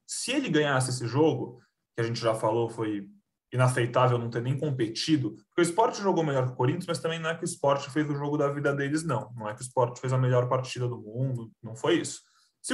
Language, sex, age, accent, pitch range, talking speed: Portuguese, male, 20-39, Brazilian, 125-165 Hz, 250 wpm